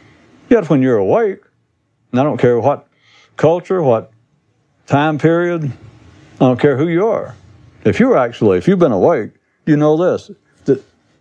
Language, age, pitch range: English, 60-79, 110-155 Hz